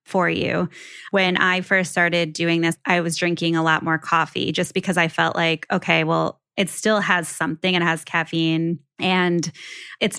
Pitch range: 160-175 Hz